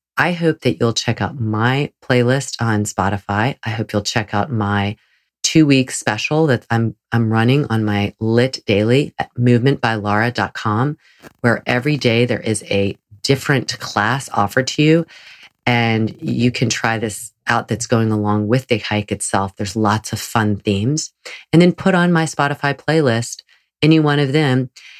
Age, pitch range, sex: 30-49, 110-140 Hz, female